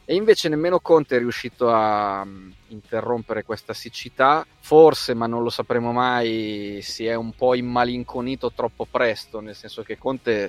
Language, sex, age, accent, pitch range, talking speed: Italian, male, 30-49, native, 105-130 Hz, 155 wpm